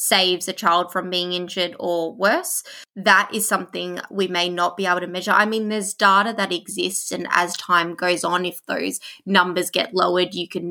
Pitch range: 180-205 Hz